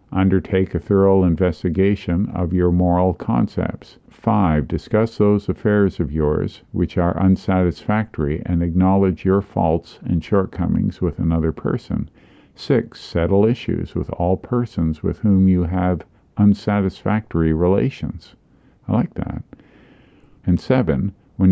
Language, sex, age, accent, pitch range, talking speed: English, male, 50-69, American, 85-100 Hz, 125 wpm